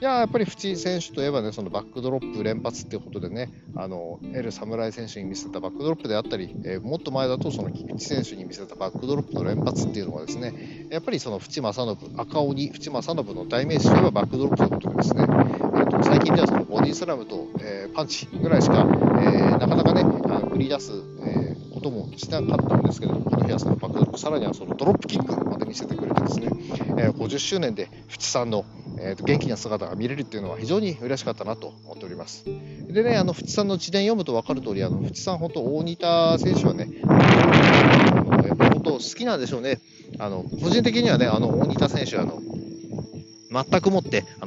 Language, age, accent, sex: Japanese, 40-59, native, male